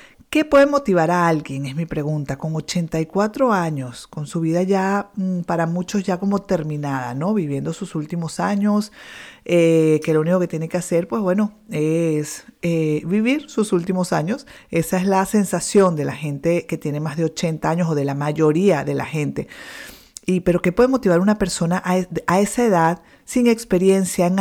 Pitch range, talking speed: 155-190 Hz, 185 wpm